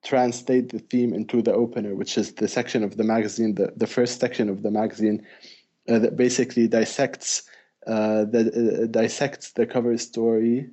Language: English